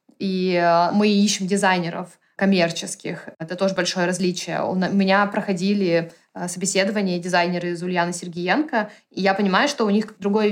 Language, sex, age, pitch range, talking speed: Russian, female, 20-39, 180-210 Hz, 135 wpm